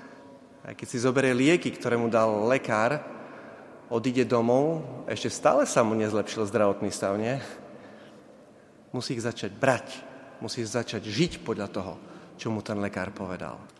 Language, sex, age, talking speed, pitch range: Slovak, male, 30-49, 145 wpm, 110-140 Hz